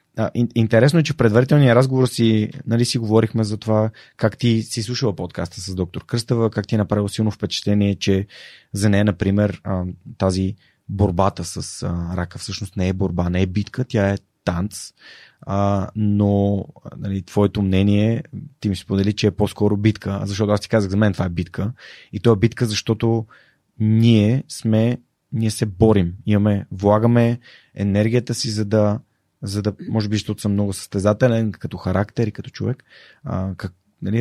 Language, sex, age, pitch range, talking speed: Bulgarian, male, 20-39, 100-115 Hz, 170 wpm